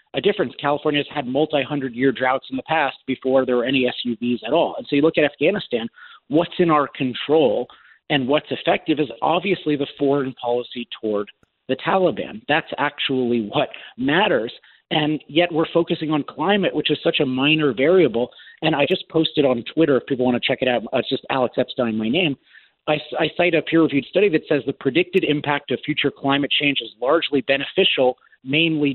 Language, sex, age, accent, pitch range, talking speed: English, male, 40-59, American, 130-160 Hz, 195 wpm